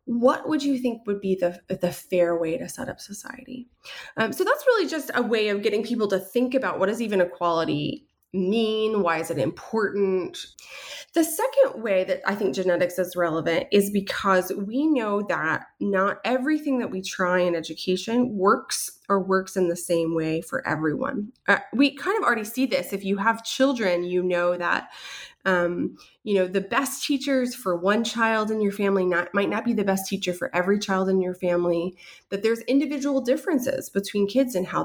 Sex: female